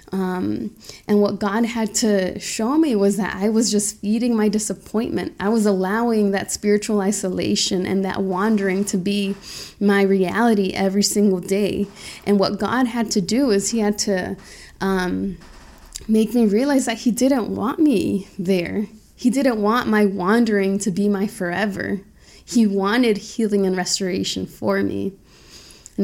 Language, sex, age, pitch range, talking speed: English, female, 20-39, 190-215 Hz, 160 wpm